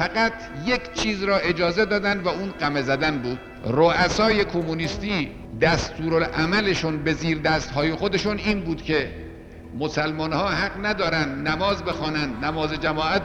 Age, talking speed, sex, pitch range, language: 50-69, 135 wpm, male, 155-205 Hz, Persian